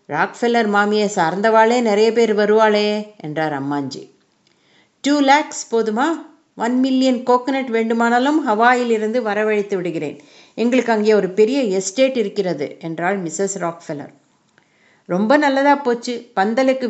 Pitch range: 200-255 Hz